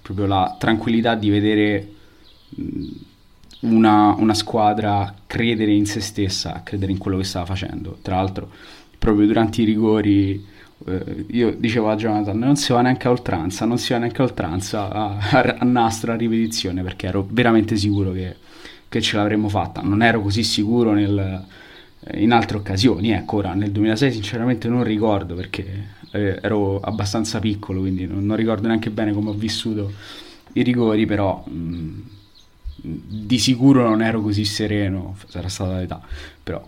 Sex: male